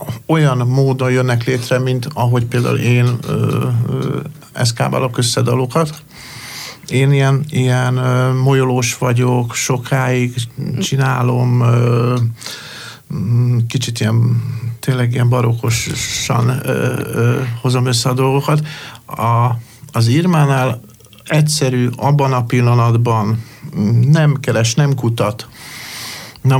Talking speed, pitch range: 85 wpm, 120-140 Hz